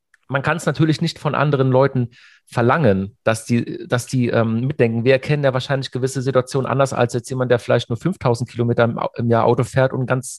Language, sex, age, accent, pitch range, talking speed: German, male, 40-59, German, 125-145 Hz, 215 wpm